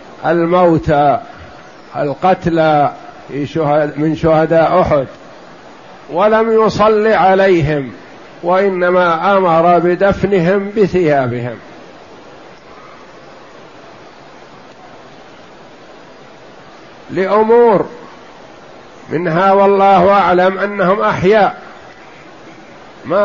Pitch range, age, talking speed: 155-200 Hz, 50-69, 50 wpm